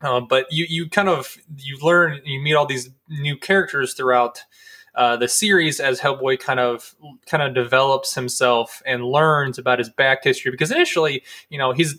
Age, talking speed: 20-39, 185 wpm